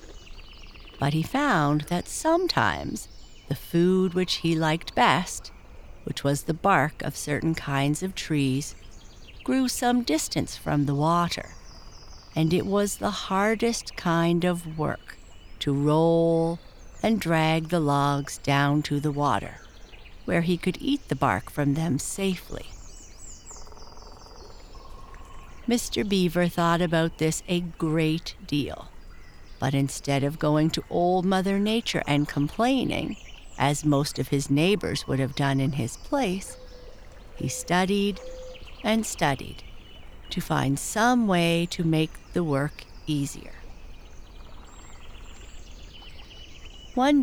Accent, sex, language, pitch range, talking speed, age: American, female, English, 135-180 Hz, 120 wpm, 60-79